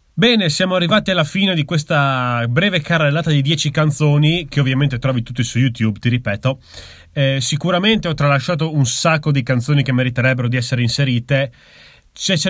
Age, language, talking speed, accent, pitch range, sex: 30-49, Italian, 170 wpm, native, 130-170 Hz, male